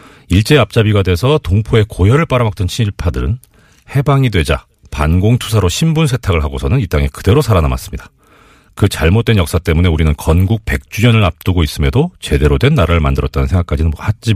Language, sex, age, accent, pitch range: Korean, male, 40-59, native, 80-120 Hz